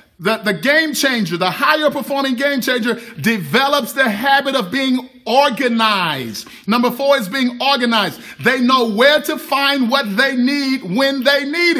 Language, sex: English, male